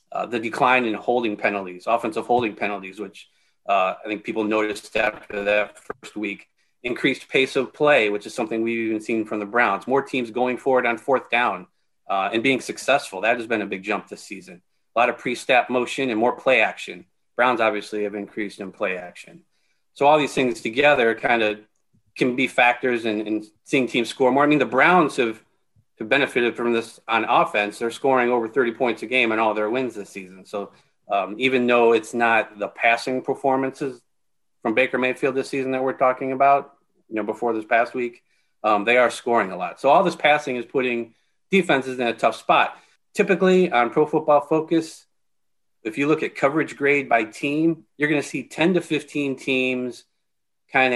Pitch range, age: 110-135 Hz, 30-49